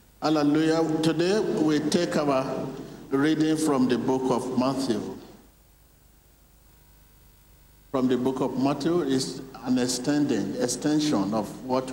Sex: male